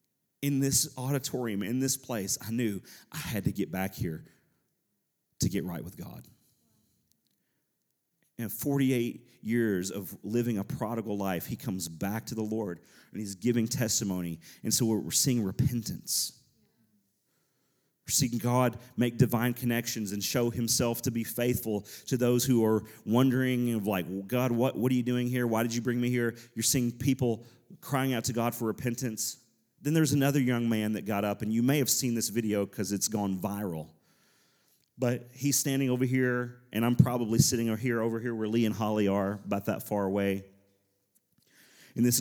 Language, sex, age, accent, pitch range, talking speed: English, male, 40-59, American, 105-125 Hz, 180 wpm